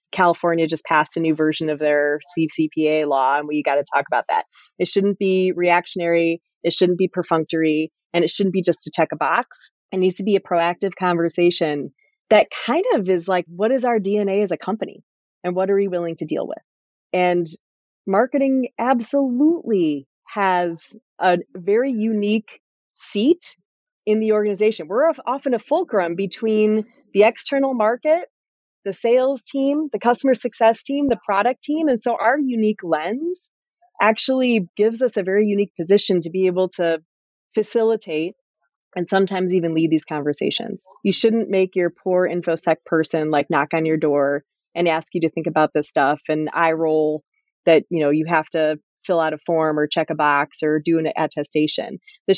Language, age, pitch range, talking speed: English, 30-49, 160-220 Hz, 180 wpm